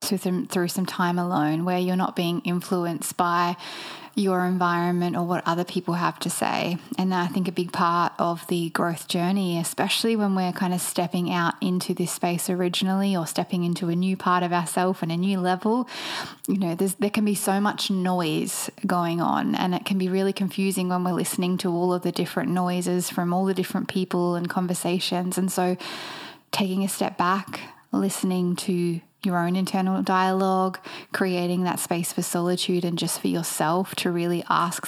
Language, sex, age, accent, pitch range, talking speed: English, female, 10-29, Australian, 175-195 Hz, 190 wpm